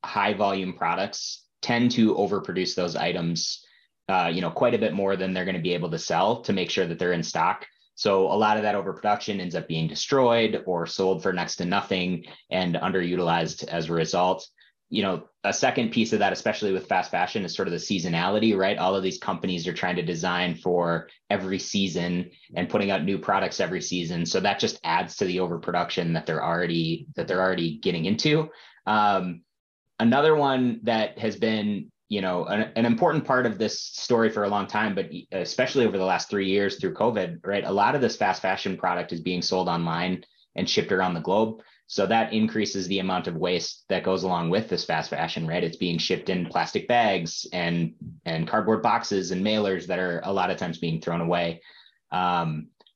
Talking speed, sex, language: 205 wpm, male, English